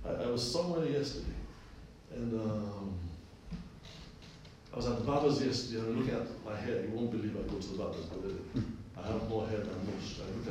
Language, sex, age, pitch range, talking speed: English, male, 60-79, 105-145 Hz, 210 wpm